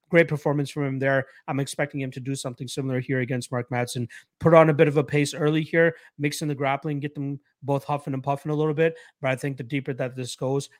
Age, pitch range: 30-49, 125-145 Hz